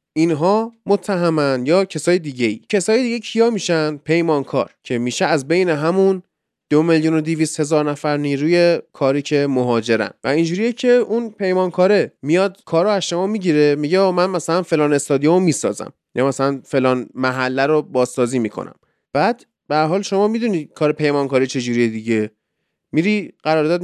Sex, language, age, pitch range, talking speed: male, Persian, 20-39, 140-205 Hz, 145 wpm